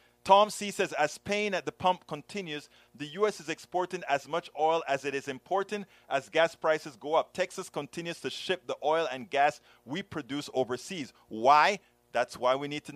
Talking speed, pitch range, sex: 195 wpm, 130-170 Hz, male